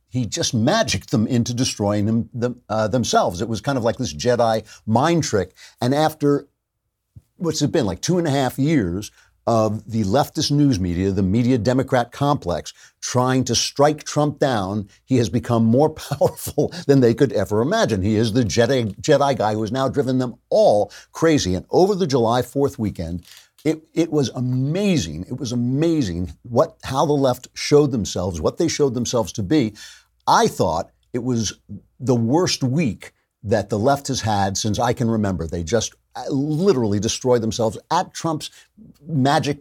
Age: 50-69